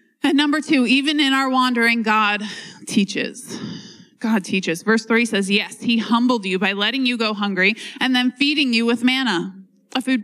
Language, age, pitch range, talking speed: English, 20-39, 200-245 Hz, 180 wpm